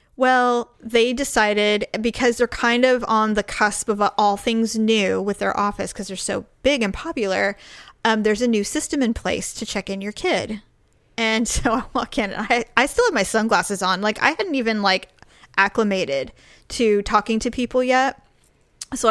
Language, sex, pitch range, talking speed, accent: English, female, 210-255 Hz, 190 wpm, American